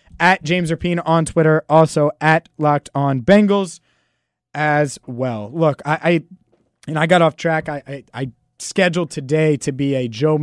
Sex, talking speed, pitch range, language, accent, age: male, 165 wpm, 135-185 Hz, English, American, 30-49